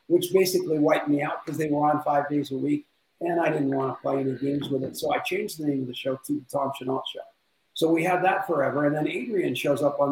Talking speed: 280 wpm